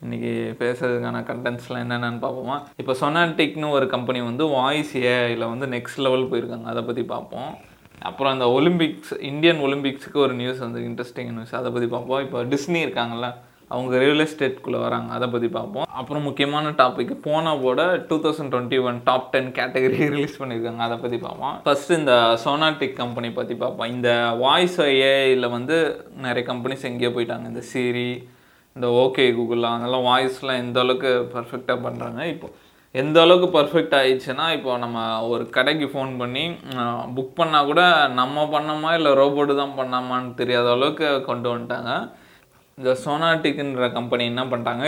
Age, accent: 20-39, native